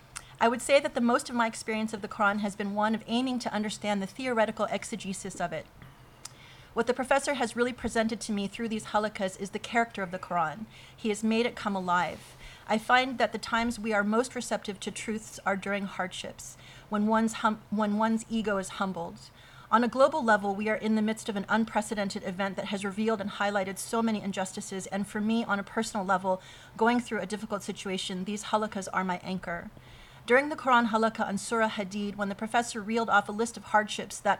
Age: 30-49